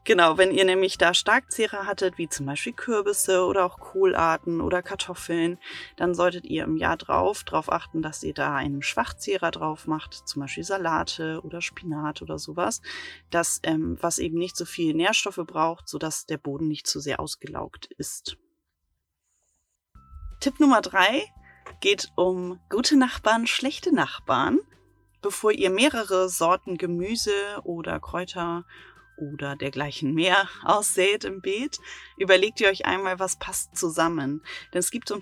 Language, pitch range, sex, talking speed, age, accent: German, 160-210 Hz, female, 150 wpm, 30-49, German